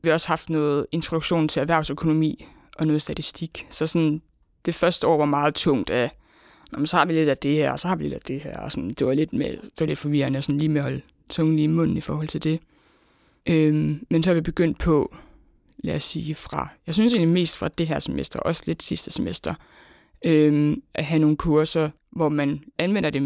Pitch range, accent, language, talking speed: 150-170 Hz, native, Danish, 230 wpm